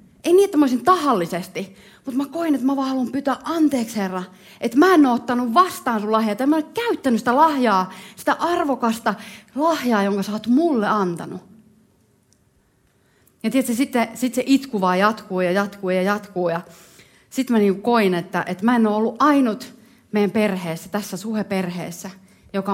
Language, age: Finnish, 30-49